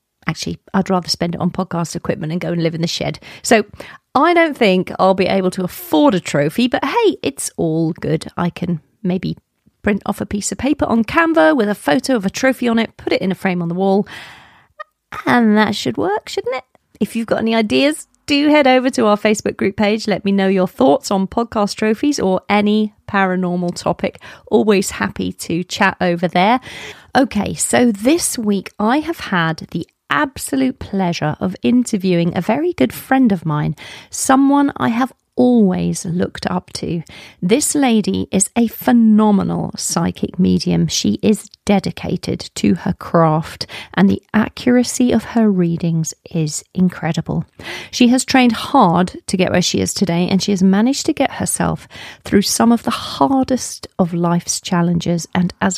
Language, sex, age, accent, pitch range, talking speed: English, female, 40-59, British, 175-245 Hz, 180 wpm